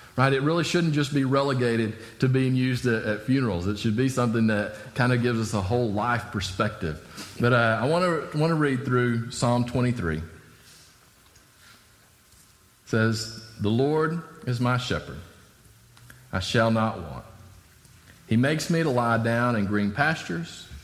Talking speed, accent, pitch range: 160 wpm, American, 95-125 Hz